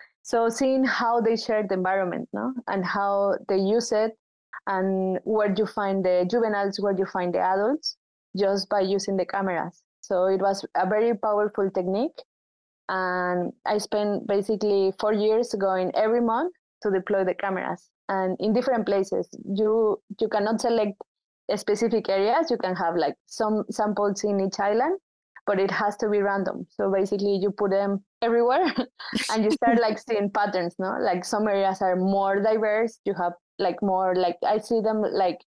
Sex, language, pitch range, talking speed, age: female, English, 190-230 Hz, 170 wpm, 20-39